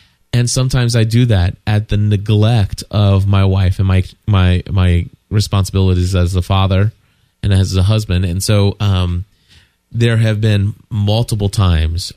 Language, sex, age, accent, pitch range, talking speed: English, male, 20-39, American, 95-110 Hz, 155 wpm